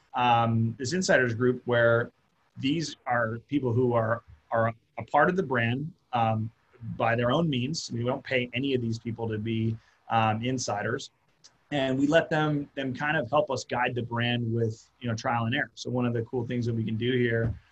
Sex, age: male, 30-49